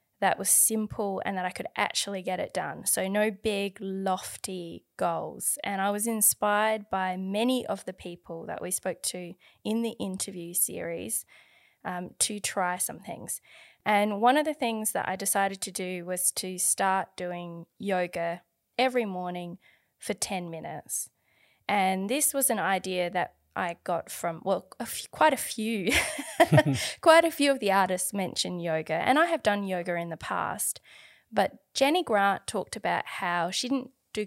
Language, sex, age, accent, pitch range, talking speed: English, female, 20-39, Australian, 185-245 Hz, 170 wpm